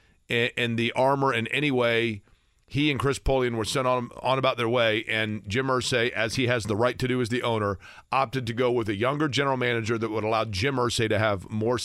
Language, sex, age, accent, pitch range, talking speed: English, male, 40-59, American, 105-145 Hz, 235 wpm